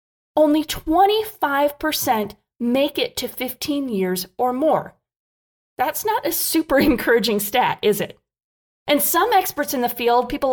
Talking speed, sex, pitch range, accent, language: 135 wpm, female, 220-295 Hz, American, English